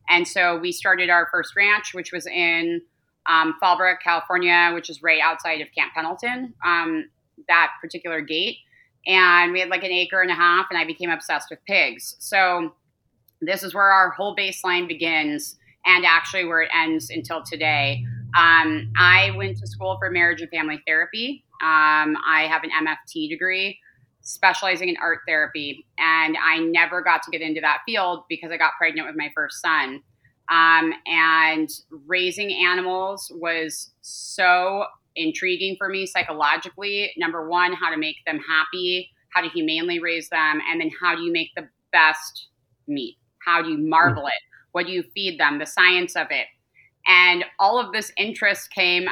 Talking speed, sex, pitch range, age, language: 175 wpm, female, 160-185 Hz, 20-39, English